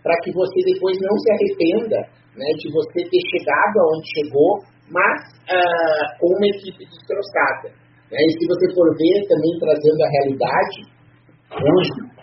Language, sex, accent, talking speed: Portuguese, male, Brazilian, 150 wpm